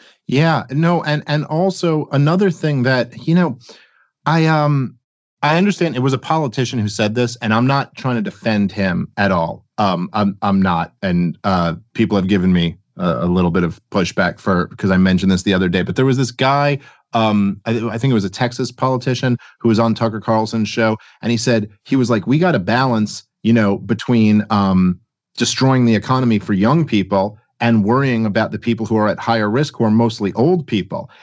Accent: American